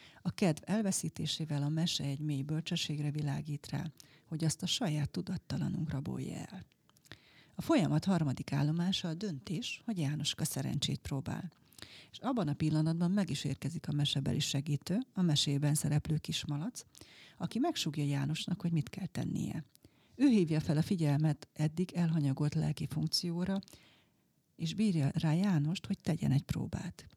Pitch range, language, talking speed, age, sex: 150-180 Hz, Hungarian, 145 wpm, 40-59, female